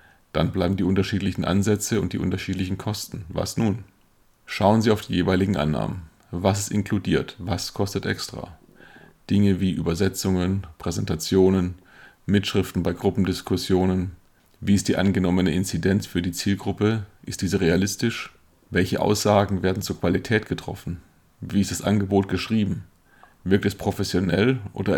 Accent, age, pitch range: German, 40-59, 90-105 Hz